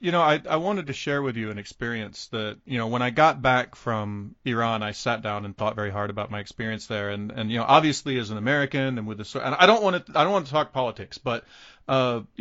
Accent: American